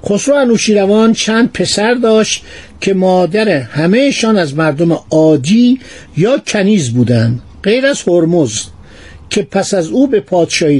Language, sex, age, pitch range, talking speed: Persian, male, 50-69, 155-225 Hz, 130 wpm